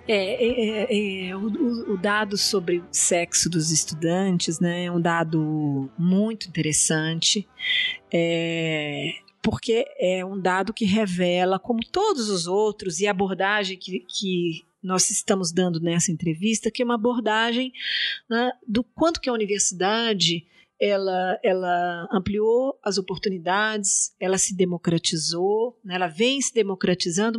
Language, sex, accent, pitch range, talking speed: Portuguese, female, Brazilian, 180-225 Hz, 135 wpm